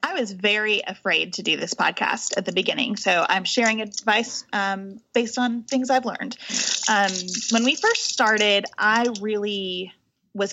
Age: 20-39